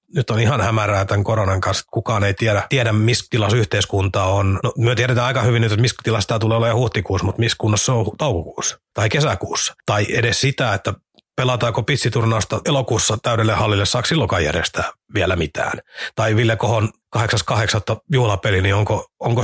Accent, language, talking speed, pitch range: native, Finnish, 165 wpm, 100-120 Hz